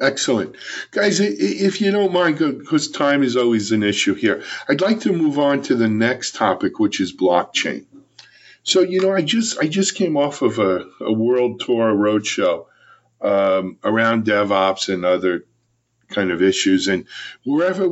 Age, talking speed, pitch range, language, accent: 50-69, 165 wpm, 95-155 Hz, English, American